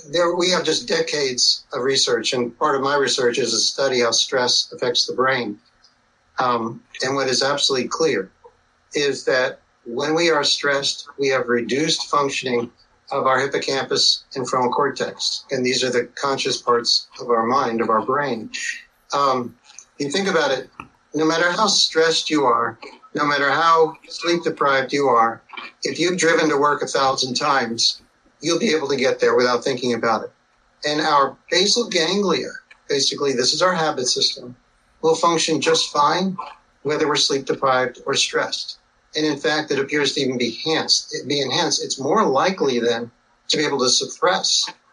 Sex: male